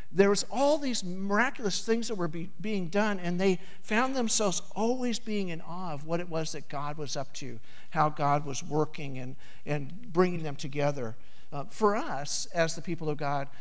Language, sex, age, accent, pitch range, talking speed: English, male, 50-69, American, 150-205 Hz, 200 wpm